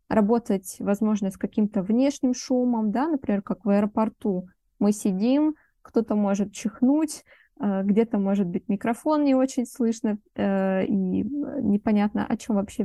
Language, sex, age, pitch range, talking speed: Russian, female, 20-39, 205-250 Hz, 130 wpm